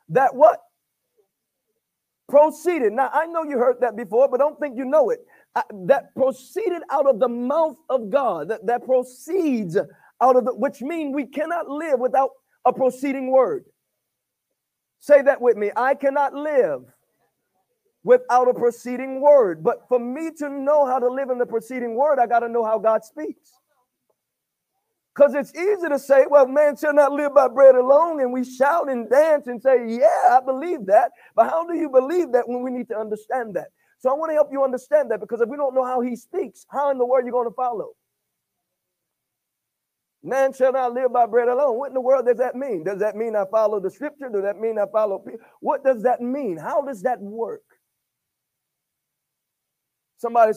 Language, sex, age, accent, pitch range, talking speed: English, male, 40-59, American, 245-295 Hz, 195 wpm